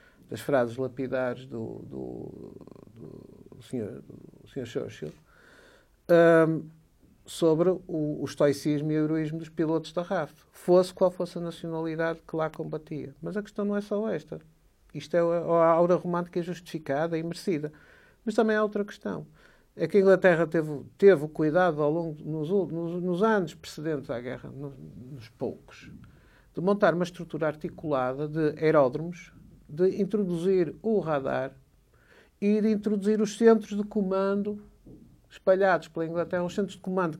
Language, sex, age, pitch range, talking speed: Portuguese, male, 50-69, 150-195 Hz, 155 wpm